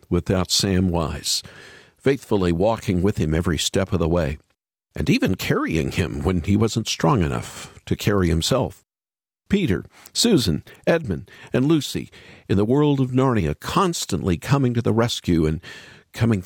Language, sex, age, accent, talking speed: English, male, 50-69, American, 150 wpm